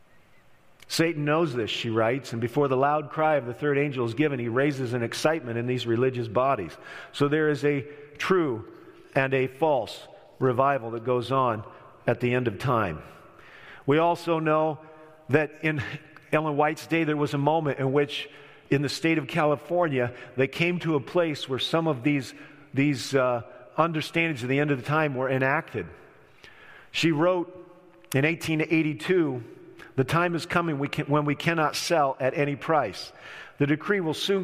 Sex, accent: male, American